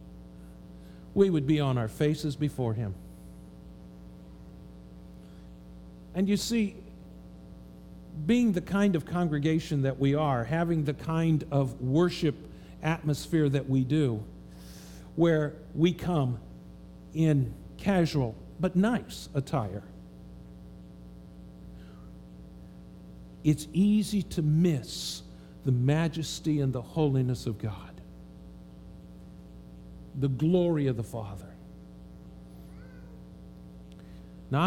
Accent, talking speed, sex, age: American, 90 wpm, male, 50-69